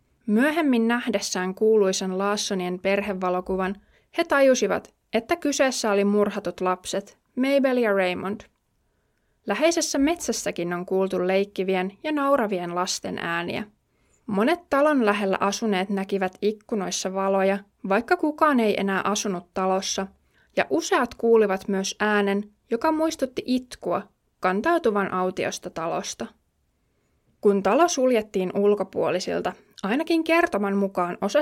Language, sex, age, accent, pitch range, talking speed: Finnish, female, 20-39, native, 190-250 Hz, 105 wpm